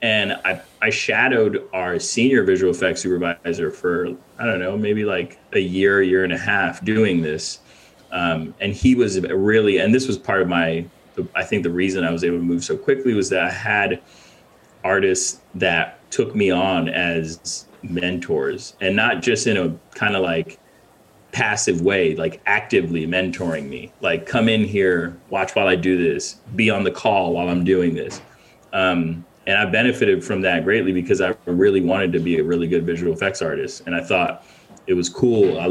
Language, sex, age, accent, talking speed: English, male, 30-49, American, 190 wpm